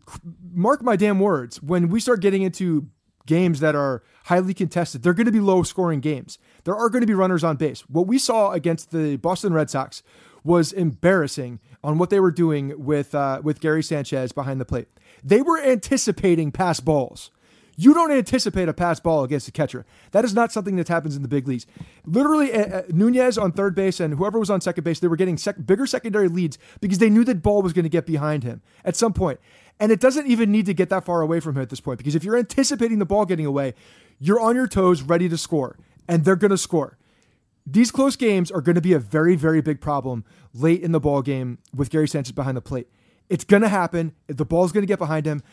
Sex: male